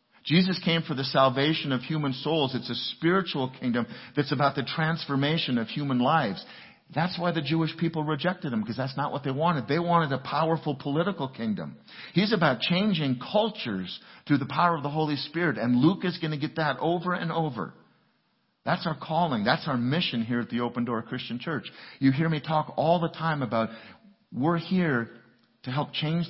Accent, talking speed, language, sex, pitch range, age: American, 195 wpm, English, male, 120-160 Hz, 50-69